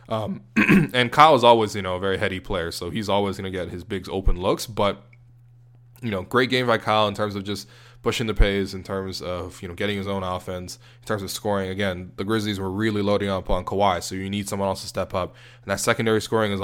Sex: male